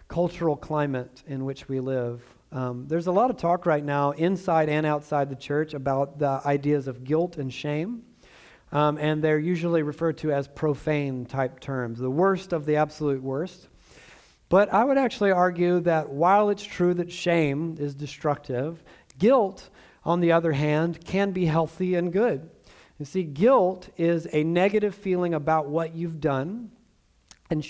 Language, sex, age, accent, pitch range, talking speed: English, male, 40-59, American, 145-180 Hz, 165 wpm